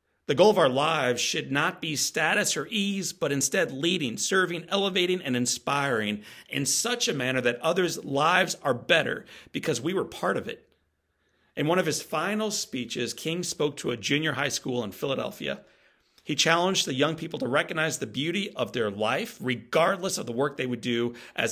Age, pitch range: 40-59, 120-175 Hz